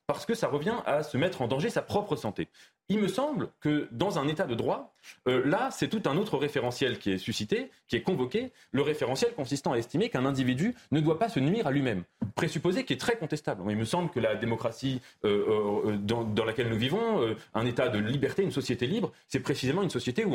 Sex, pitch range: male, 125-185 Hz